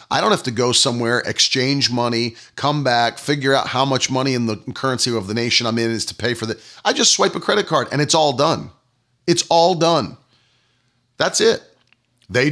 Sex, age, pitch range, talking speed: male, 40-59, 125-160 Hz, 210 wpm